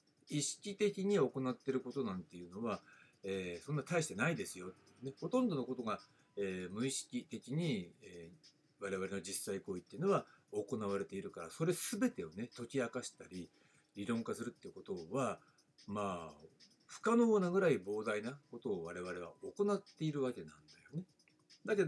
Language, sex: Japanese, male